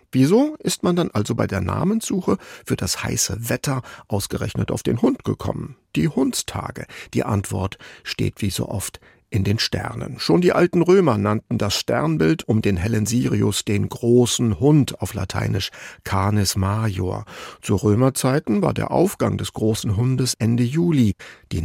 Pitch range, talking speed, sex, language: 100-125 Hz, 160 wpm, male, German